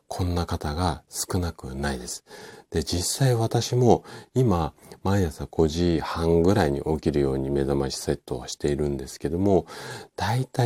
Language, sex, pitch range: Japanese, male, 70-100 Hz